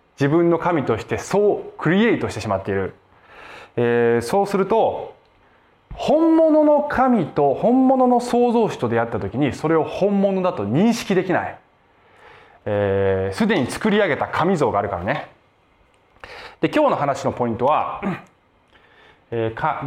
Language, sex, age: Japanese, male, 20-39